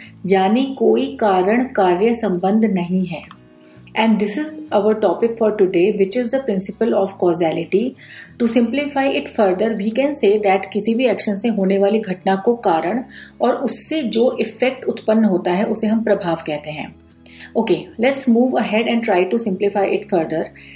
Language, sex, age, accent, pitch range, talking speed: Hindi, female, 40-59, native, 190-235 Hz, 175 wpm